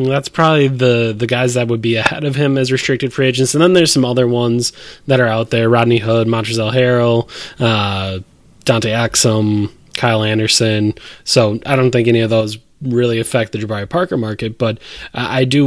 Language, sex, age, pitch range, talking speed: English, male, 20-39, 115-135 Hz, 190 wpm